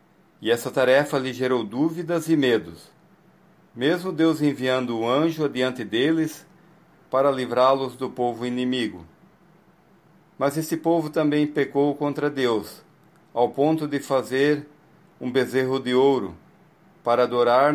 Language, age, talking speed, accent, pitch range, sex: Portuguese, 40-59, 125 wpm, Brazilian, 125-165 Hz, male